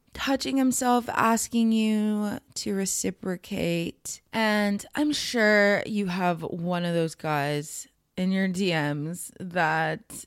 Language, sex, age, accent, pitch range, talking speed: English, female, 20-39, American, 175-215 Hz, 110 wpm